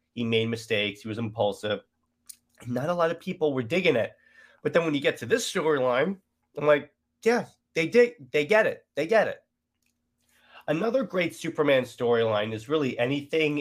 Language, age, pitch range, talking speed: English, 30-49, 110-140 Hz, 175 wpm